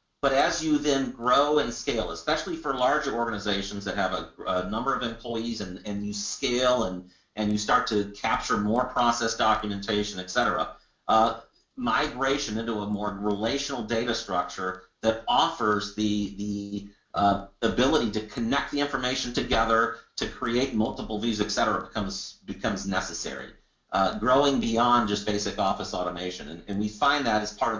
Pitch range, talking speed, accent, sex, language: 105-120 Hz, 165 wpm, American, male, English